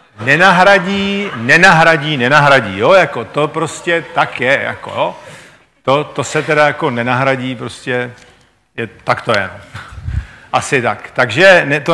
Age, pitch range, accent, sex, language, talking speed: 50-69, 125-165 Hz, native, male, Czech, 125 wpm